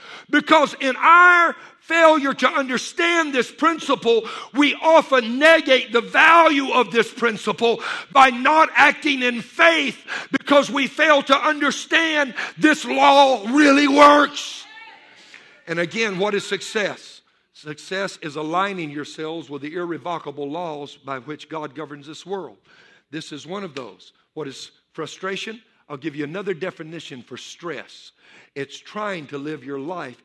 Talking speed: 140 wpm